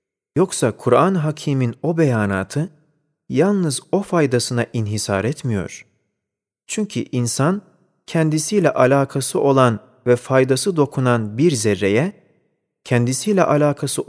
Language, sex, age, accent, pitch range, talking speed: Turkish, male, 40-59, native, 120-160 Hz, 95 wpm